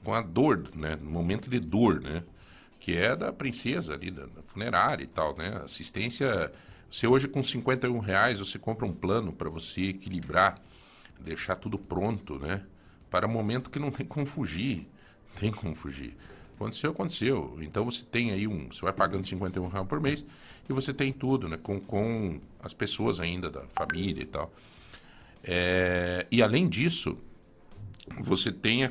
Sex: male